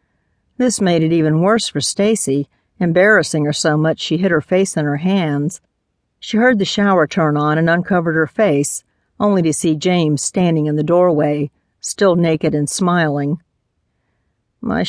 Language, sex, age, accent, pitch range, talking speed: English, female, 50-69, American, 155-190 Hz, 165 wpm